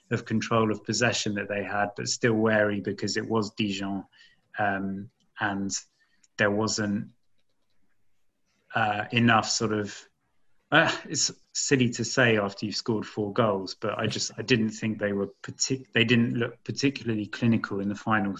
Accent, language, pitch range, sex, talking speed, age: British, English, 105-120 Hz, male, 160 wpm, 30-49